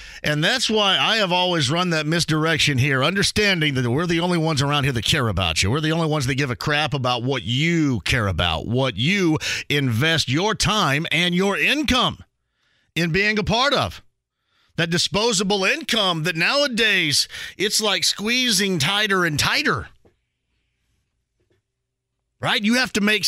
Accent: American